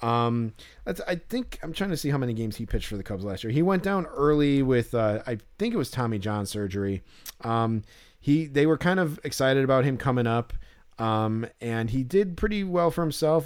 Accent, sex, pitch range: American, male, 110-140 Hz